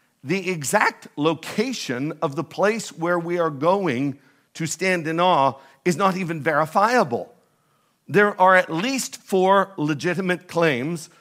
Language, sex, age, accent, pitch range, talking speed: English, male, 50-69, American, 145-180 Hz, 135 wpm